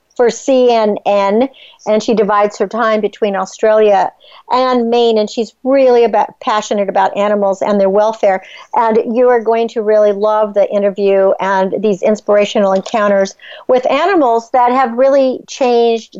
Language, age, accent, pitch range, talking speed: English, 60-79, American, 215-265 Hz, 150 wpm